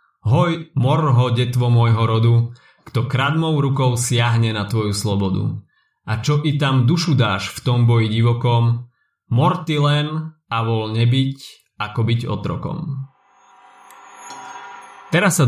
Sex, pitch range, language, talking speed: male, 115-145 Hz, Slovak, 125 wpm